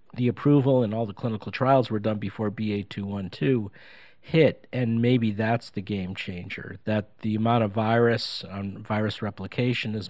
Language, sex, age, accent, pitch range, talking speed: English, male, 50-69, American, 100-120 Hz, 160 wpm